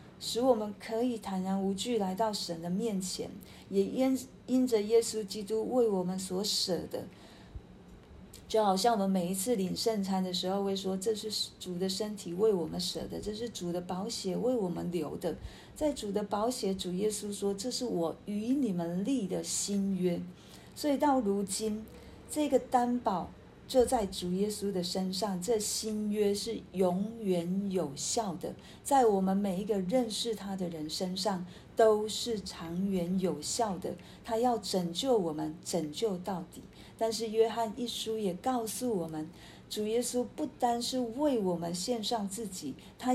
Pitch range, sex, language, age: 190-230 Hz, female, Chinese, 40-59